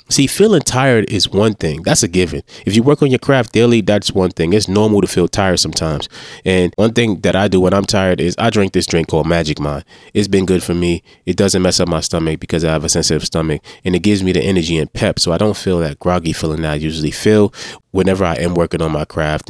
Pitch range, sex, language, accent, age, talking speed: 90-110 Hz, male, English, American, 20-39, 260 wpm